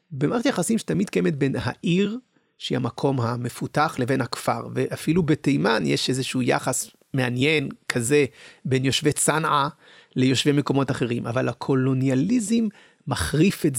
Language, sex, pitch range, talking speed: English, male, 135-190 Hz, 115 wpm